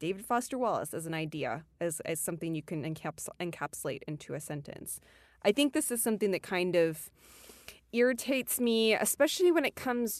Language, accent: English, American